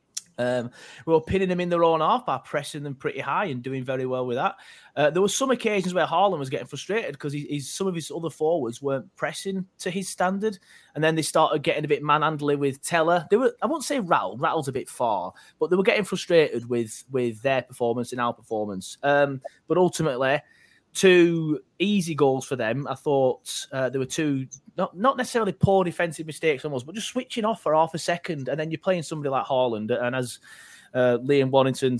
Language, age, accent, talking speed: English, 30-49, British, 215 wpm